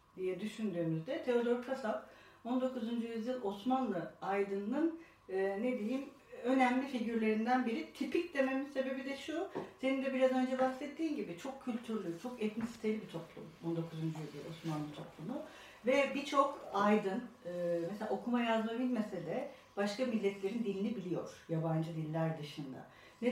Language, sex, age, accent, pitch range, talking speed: Turkish, female, 60-79, native, 185-255 Hz, 135 wpm